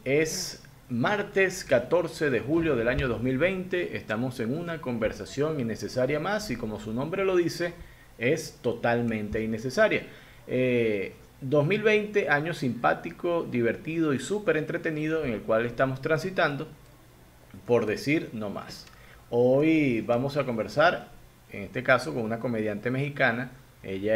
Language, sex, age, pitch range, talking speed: Spanish, male, 40-59, 125-175 Hz, 130 wpm